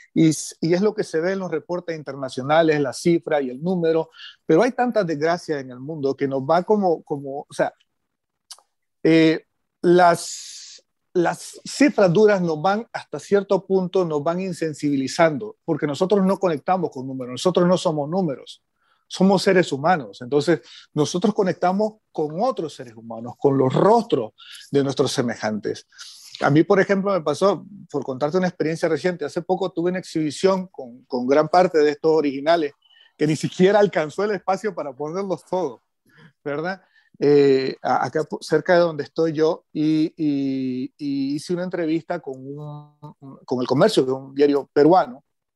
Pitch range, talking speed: 145-185 Hz, 165 wpm